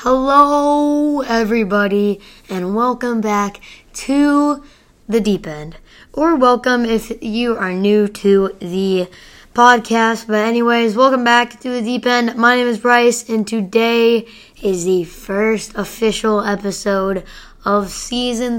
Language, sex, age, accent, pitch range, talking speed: English, female, 10-29, American, 205-250 Hz, 125 wpm